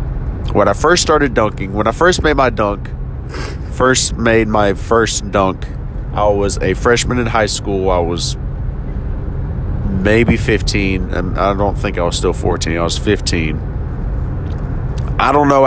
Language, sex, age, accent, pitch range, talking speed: English, male, 30-49, American, 90-120 Hz, 155 wpm